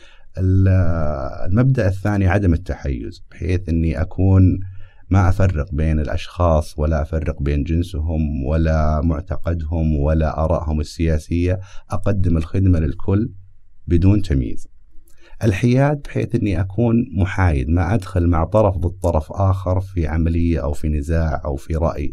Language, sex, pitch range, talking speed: Arabic, male, 80-100 Hz, 120 wpm